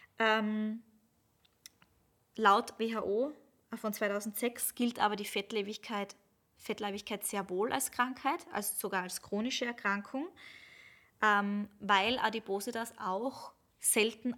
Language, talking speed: German, 105 wpm